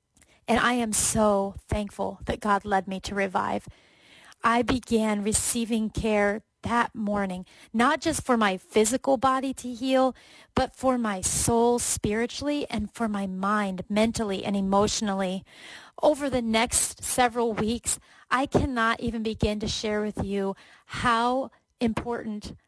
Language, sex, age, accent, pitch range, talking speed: English, female, 30-49, American, 210-245 Hz, 140 wpm